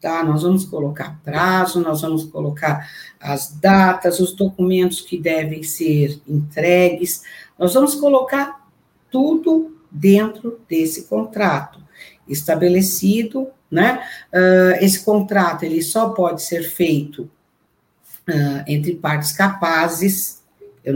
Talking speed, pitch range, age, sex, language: 100 wpm, 155-215 Hz, 50-69, female, Portuguese